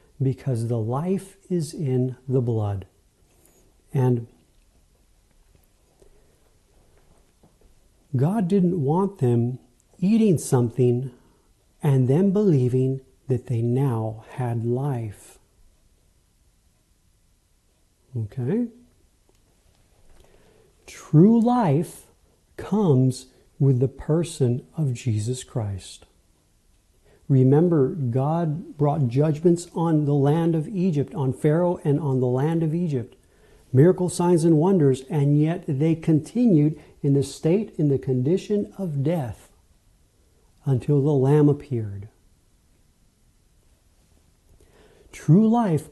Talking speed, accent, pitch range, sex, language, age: 95 wpm, American, 110-160 Hz, male, English, 50-69